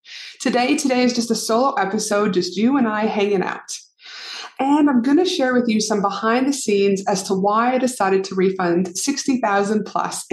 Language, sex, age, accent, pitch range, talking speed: English, female, 30-49, American, 200-255 Hz, 185 wpm